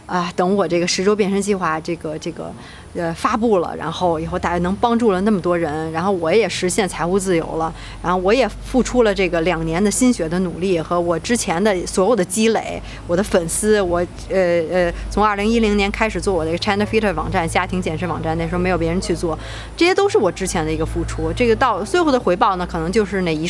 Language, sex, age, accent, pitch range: Chinese, female, 20-39, native, 165-215 Hz